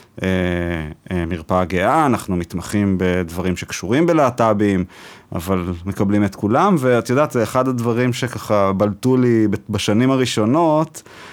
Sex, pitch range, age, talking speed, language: male, 100-125 Hz, 30-49, 110 wpm, Hebrew